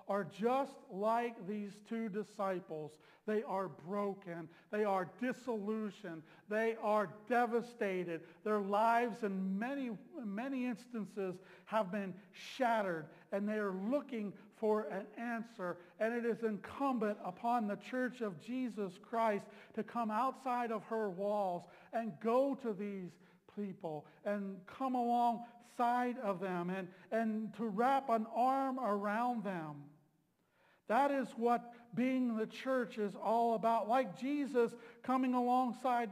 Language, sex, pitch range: English, male, 200-245 Hz